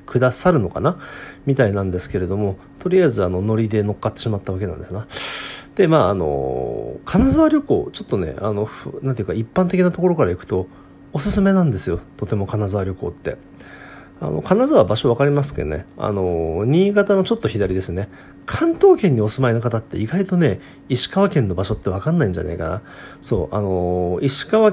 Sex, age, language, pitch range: male, 40-59, Japanese, 95-145 Hz